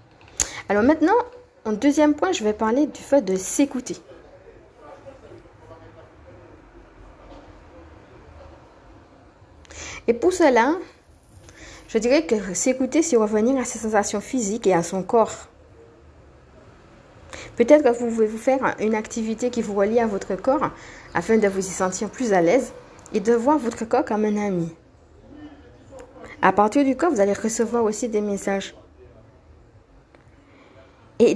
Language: French